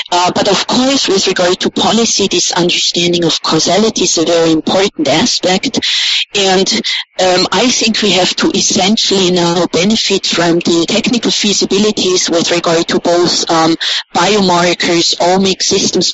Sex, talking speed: female, 145 wpm